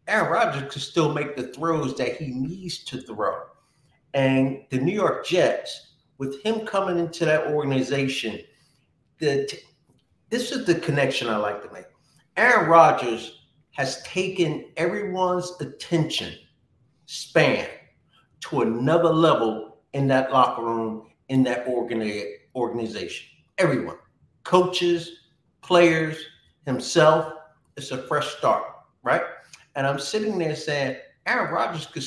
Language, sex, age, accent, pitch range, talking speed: English, male, 50-69, American, 125-165 Hz, 125 wpm